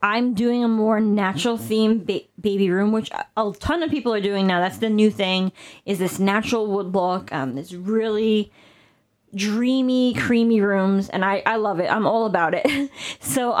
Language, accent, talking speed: English, American, 180 wpm